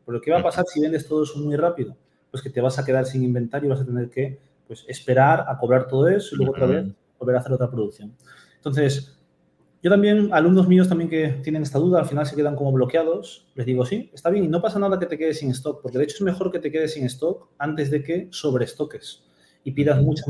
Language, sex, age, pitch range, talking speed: English, male, 30-49, 130-160 Hz, 255 wpm